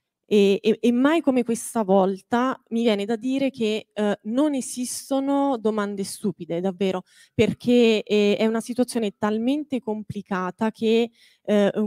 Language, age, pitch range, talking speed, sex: Italian, 20-39, 195-235 Hz, 135 wpm, female